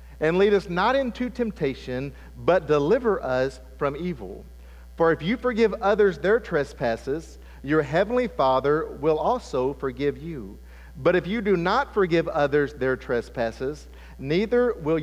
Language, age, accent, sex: English, 50-69, American, male